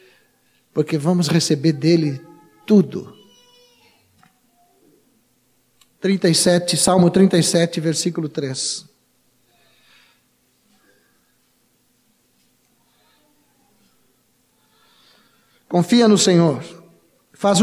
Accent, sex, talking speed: Brazilian, male, 45 wpm